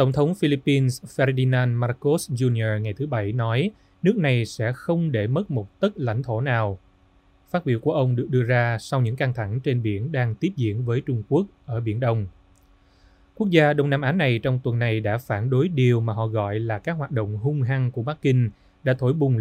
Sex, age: male, 20-39